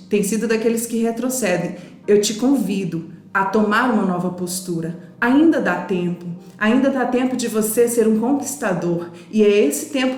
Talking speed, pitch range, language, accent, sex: 165 wpm, 200-260 Hz, Portuguese, Brazilian, female